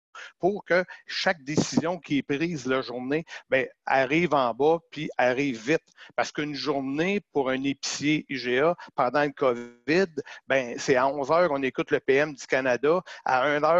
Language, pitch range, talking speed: French, 135-165 Hz, 165 wpm